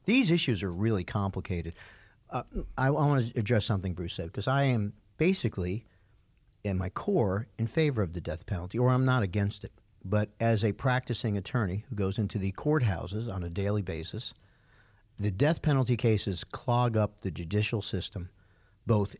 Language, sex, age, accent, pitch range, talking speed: English, male, 50-69, American, 100-125 Hz, 170 wpm